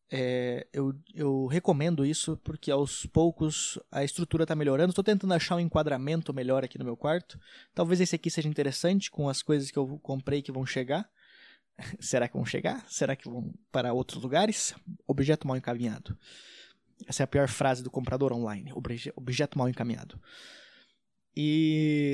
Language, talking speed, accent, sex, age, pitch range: Portuguese, 165 wpm, Brazilian, male, 20-39, 140-175 Hz